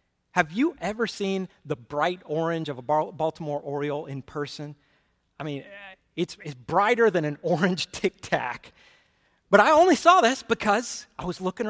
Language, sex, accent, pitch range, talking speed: English, male, American, 145-190 Hz, 160 wpm